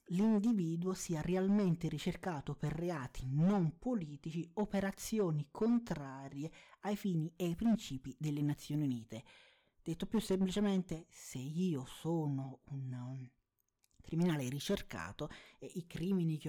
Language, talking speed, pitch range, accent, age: Italian, 115 wpm, 140-185 Hz, native, 30-49